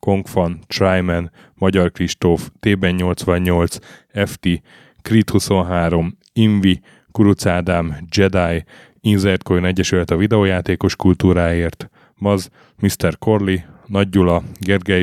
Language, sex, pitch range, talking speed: Hungarian, male, 90-100 Hz, 90 wpm